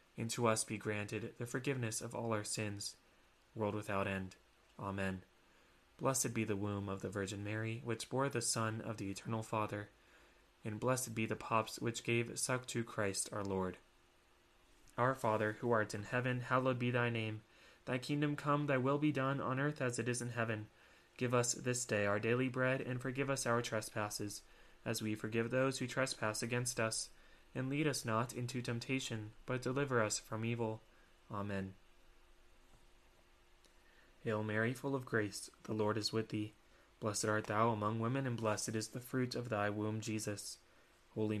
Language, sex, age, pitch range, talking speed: English, male, 20-39, 105-120 Hz, 180 wpm